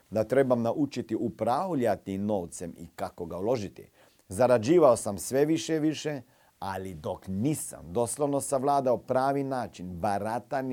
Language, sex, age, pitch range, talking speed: Croatian, male, 50-69, 100-135 Hz, 130 wpm